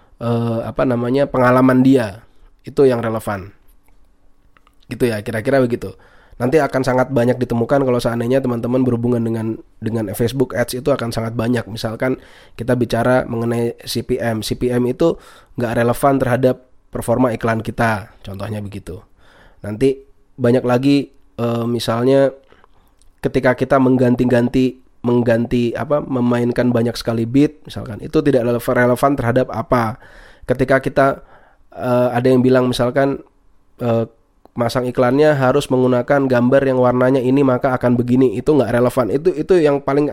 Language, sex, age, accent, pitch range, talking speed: Indonesian, male, 20-39, native, 115-130 Hz, 135 wpm